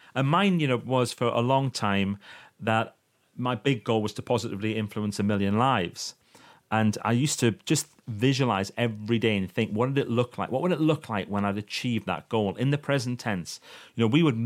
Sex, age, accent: male, 30-49, British